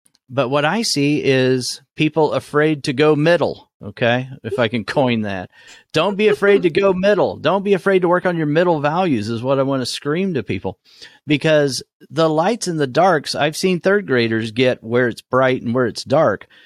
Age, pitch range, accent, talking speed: 40-59, 115-160 Hz, American, 205 wpm